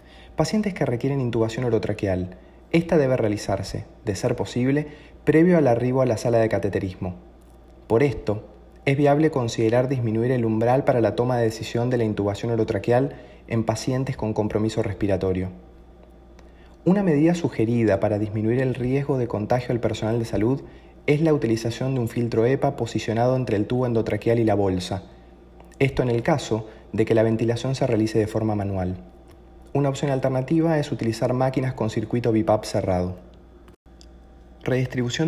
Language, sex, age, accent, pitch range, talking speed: Spanish, male, 30-49, Argentinian, 100-130 Hz, 160 wpm